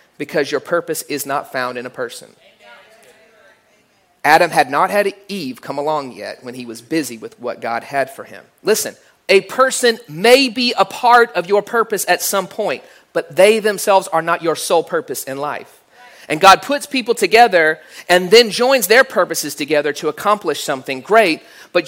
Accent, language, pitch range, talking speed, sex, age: American, English, 145-205 Hz, 180 wpm, male, 40-59